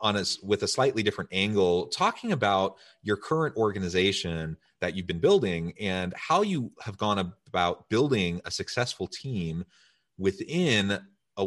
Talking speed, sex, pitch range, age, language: 150 wpm, male, 85-100 Hz, 30-49, English